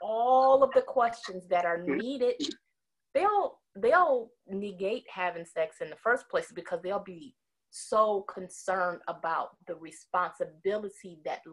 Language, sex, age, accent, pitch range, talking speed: English, female, 30-49, American, 175-255 Hz, 130 wpm